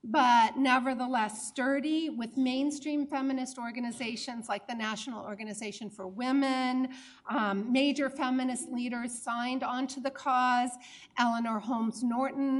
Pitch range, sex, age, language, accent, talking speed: 215-270 Hz, female, 50-69, English, American, 115 wpm